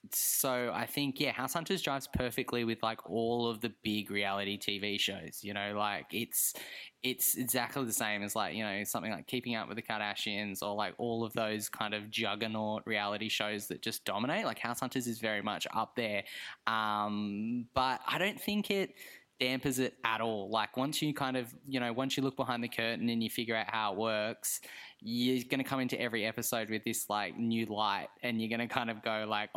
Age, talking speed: 10-29, 215 wpm